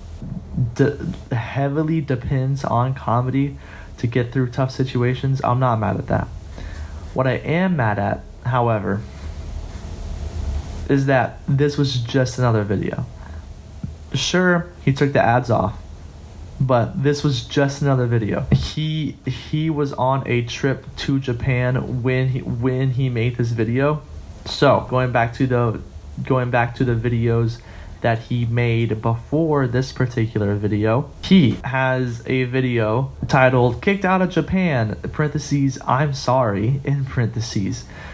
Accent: American